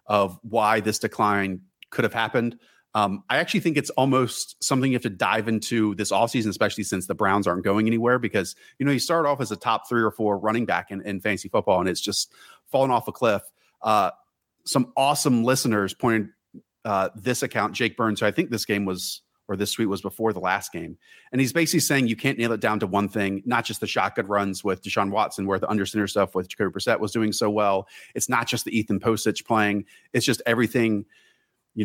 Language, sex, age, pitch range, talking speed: English, male, 30-49, 105-125 Hz, 225 wpm